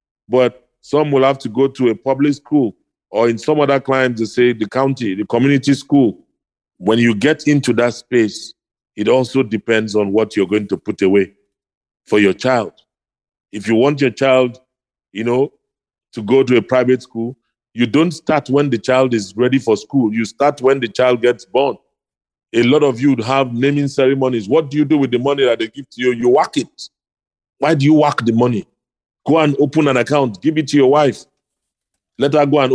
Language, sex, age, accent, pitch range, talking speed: English, male, 40-59, Nigerian, 120-145 Hz, 210 wpm